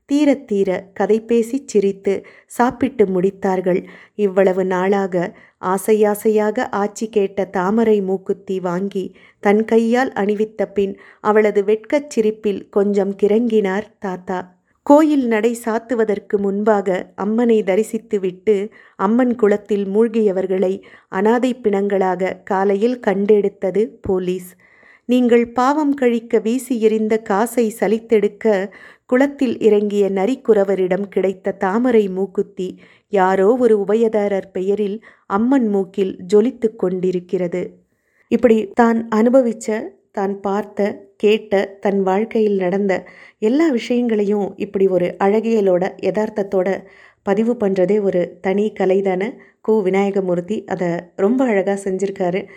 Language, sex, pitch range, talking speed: Tamil, female, 195-225 Hz, 95 wpm